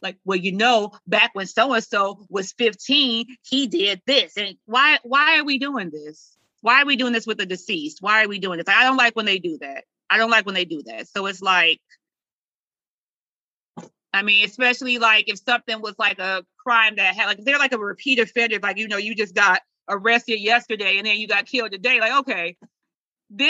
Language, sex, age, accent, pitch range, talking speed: English, female, 30-49, American, 205-255 Hz, 215 wpm